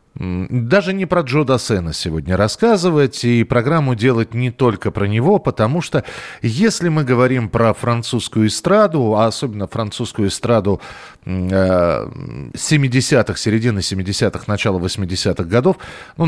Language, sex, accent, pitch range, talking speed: Russian, male, native, 105-150 Hz, 125 wpm